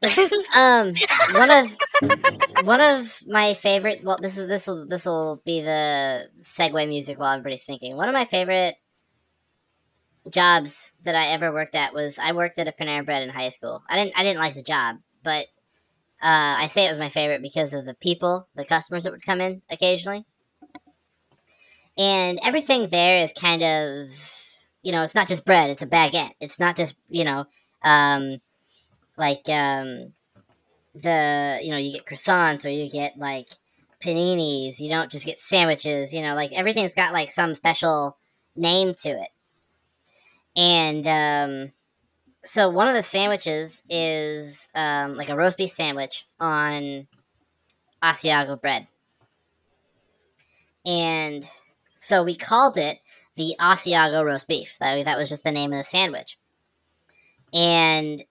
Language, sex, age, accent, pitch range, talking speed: English, male, 10-29, American, 145-185 Hz, 155 wpm